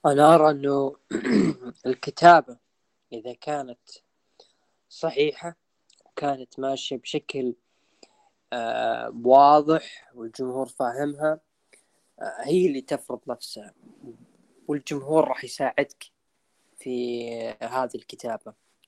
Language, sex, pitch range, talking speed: Arabic, female, 125-150 Hz, 75 wpm